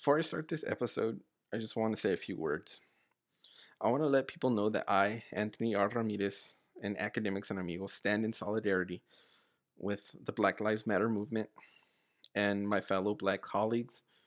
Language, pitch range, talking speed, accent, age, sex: English, 100-115 Hz, 175 wpm, American, 20-39, male